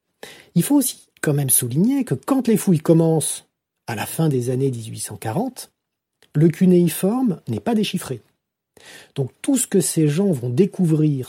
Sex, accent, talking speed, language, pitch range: male, French, 160 wpm, French, 135-185 Hz